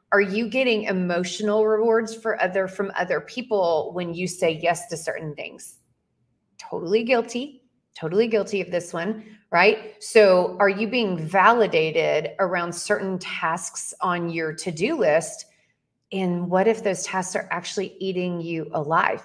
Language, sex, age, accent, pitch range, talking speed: English, female, 30-49, American, 170-210 Hz, 145 wpm